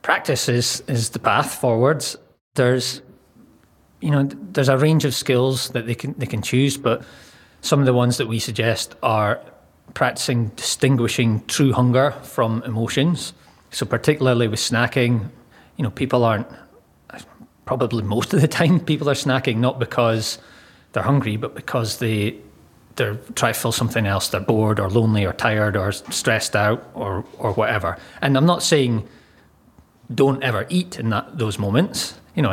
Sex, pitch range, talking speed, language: male, 115-135 Hz, 160 wpm, English